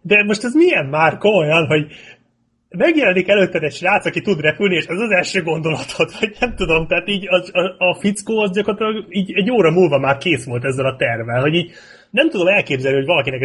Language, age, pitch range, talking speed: Hungarian, 30-49, 130-180 Hz, 210 wpm